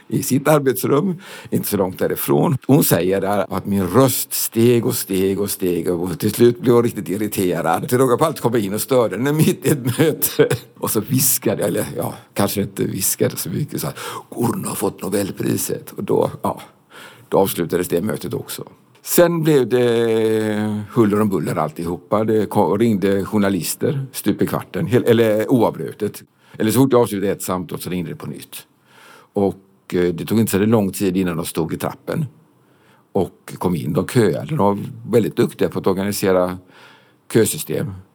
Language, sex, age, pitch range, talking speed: Swedish, male, 60-79, 95-130 Hz, 180 wpm